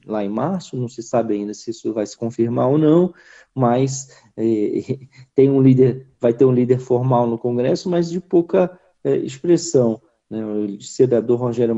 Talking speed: 155 wpm